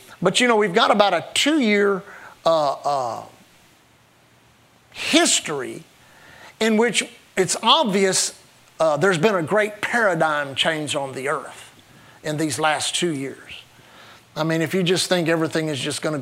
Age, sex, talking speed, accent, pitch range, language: 50-69, male, 150 wpm, American, 170-220 Hz, English